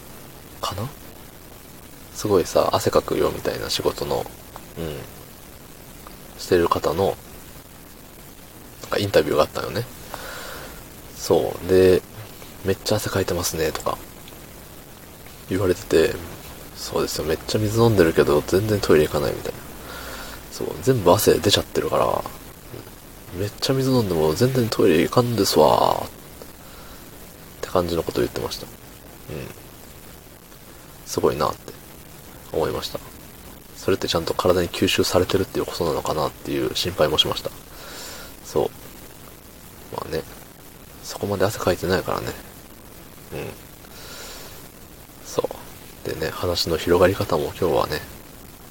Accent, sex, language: native, male, Japanese